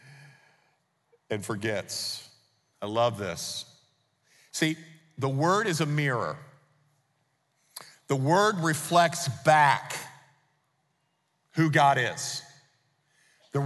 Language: English